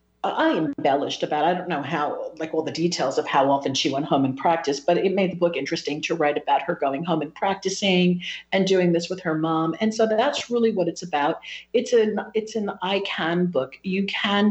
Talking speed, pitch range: 230 wpm, 155-180 Hz